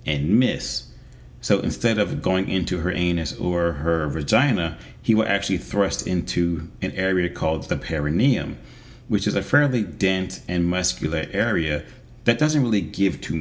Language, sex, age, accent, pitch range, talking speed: English, male, 30-49, American, 90-120 Hz, 155 wpm